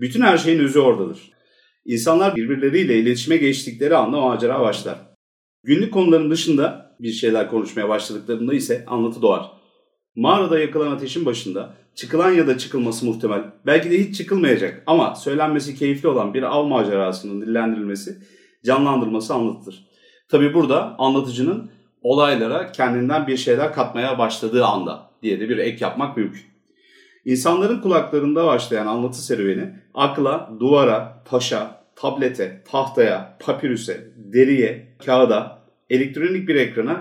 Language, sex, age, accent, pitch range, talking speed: Turkish, male, 40-59, native, 120-165 Hz, 125 wpm